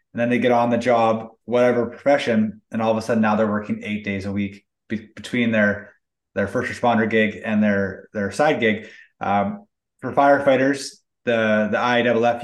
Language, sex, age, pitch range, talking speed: English, male, 20-39, 110-120 Hz, 190 wpm